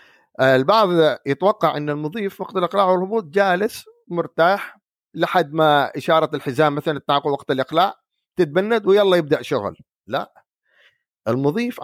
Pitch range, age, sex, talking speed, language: 125-165 Hz, 50-69, male, 115 wpm, Arabic